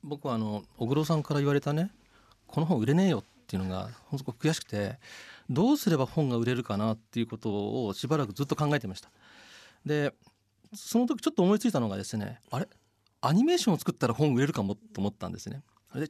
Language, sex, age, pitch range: Japanese, male, 40-59, 110-170 Hz